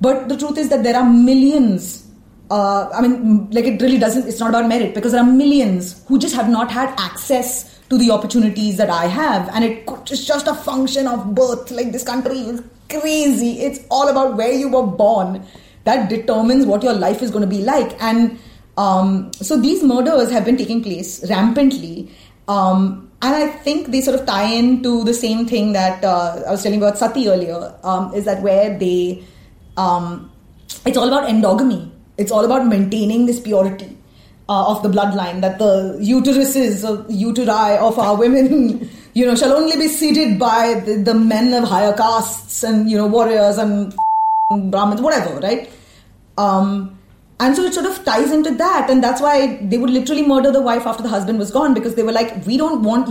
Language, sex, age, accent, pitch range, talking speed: English, female, 30-49, Indian, 205-260 Hz, 200 wpm